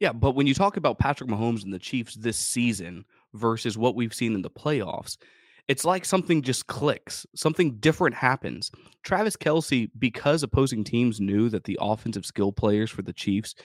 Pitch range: 110-145 Hz